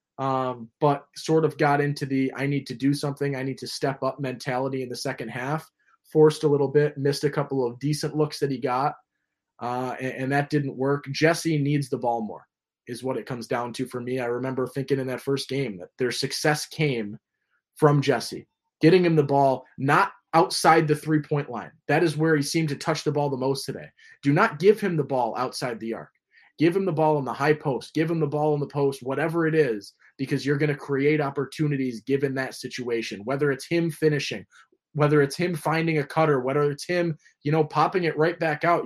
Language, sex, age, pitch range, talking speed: English, male, 20-39, 135-160 Hz, 220 wpm